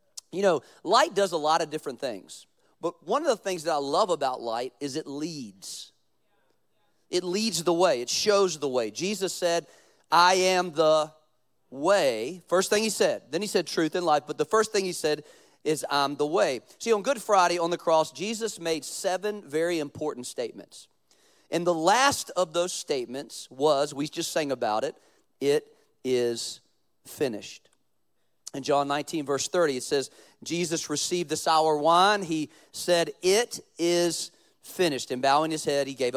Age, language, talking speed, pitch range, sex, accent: 40-59, English, 180 wpm, 155-200 Hz, male, American